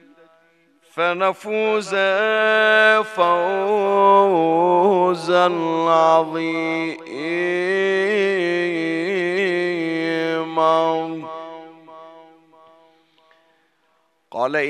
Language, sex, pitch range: Arabic, male, 160-180 Hz